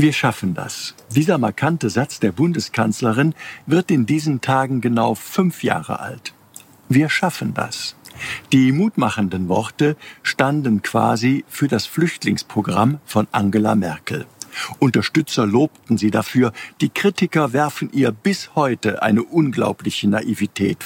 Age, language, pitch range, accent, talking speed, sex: 50-69, German, 115-150 Hz, German, 125 wpm, male